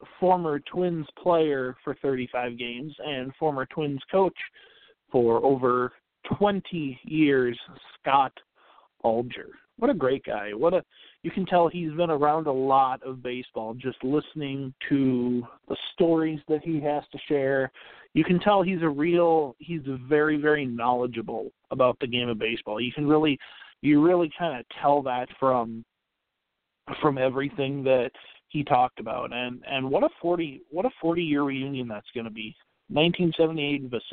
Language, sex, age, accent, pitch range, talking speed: English, male, 40-59, American, 135-185 Hz, 155 wpm